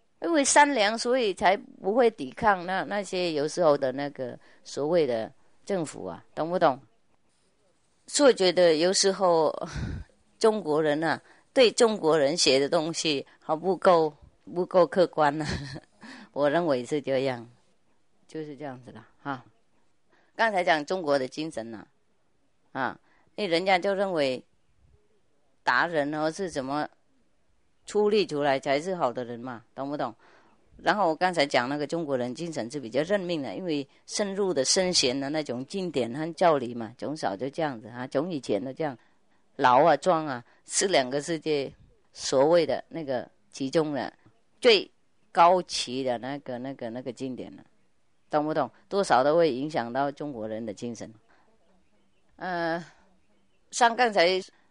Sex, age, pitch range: female, 30-49, 135-185 Hz